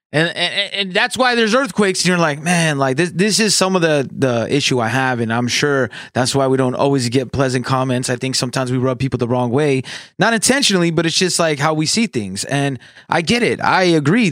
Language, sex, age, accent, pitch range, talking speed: English, male, 20-39, American, 130-165 Hz, 245 wpm